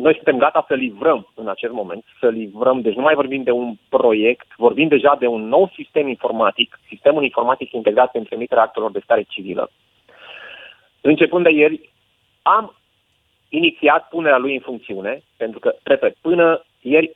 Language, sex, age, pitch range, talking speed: Romanian, male, 30-49, 130-200 Hz, 160 wpm